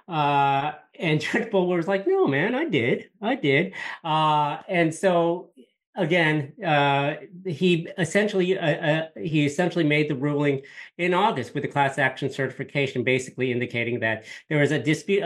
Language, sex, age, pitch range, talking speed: English, male, 50-69, 125-155 Hz, 155 wpm